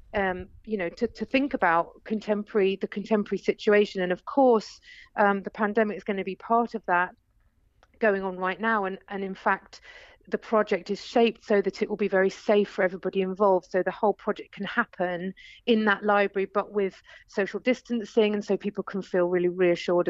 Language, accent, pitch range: English, British, 190-220 Hz